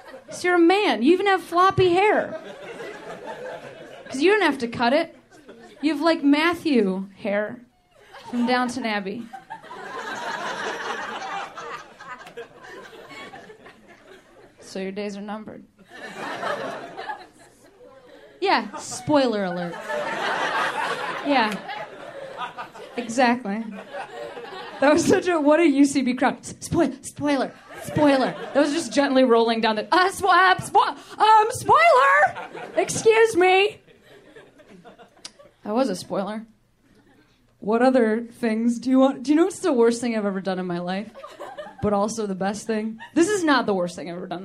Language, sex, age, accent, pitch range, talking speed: English, female, 20-39, American, 205-315 Hz, 130 wpm